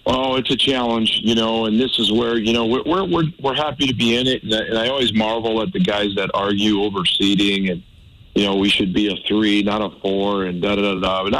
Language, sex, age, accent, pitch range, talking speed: English, male, 50-69, American, 100-110 Hz, 260 wpm